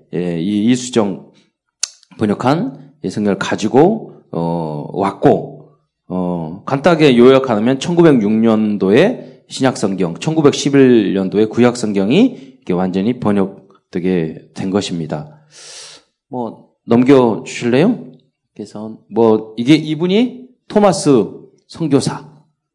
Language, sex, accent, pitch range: Korean, male, native, 100-145 Hz